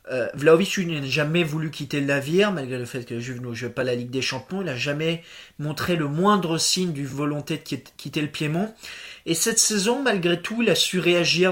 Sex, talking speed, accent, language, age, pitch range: male, 230 wpm, French, French, 20-39, 150-185 Hz